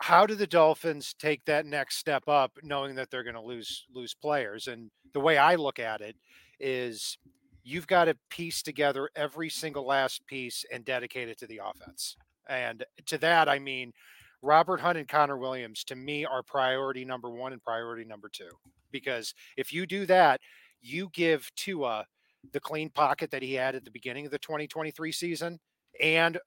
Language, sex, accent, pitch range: English, male, American, 130-160 Hz